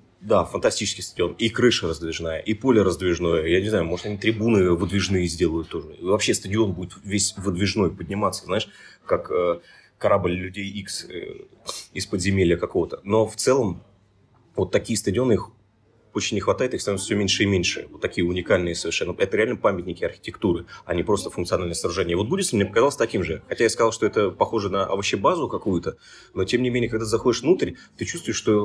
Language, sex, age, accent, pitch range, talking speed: Russian, male, 30-49, native, 100-120 Hz, 190 wpm